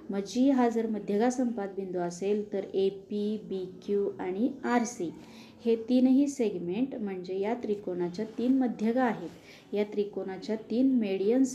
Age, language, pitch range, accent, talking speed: 20-39, Marathi, 190-240 Hz, native, 135 wpm